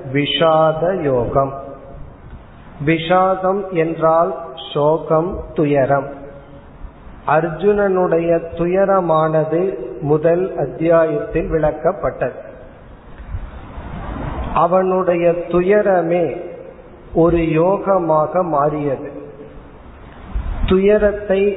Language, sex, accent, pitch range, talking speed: Tamil, male, native, 155-180 Hz, 40 wpm